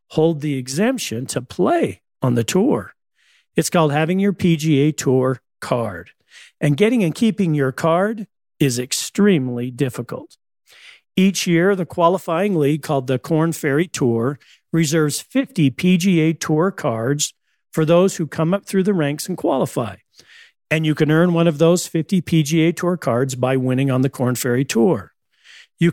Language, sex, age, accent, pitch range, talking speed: English, male, 50-69, American, 140-180 Hz, 155 wpm